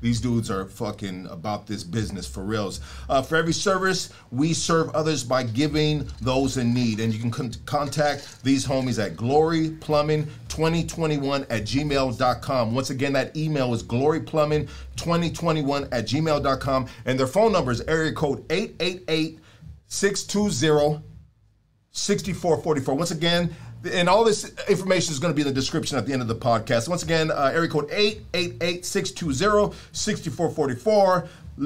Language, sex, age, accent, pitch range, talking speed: English, male, 40-59, American, 125-170 Hz, 140 wpm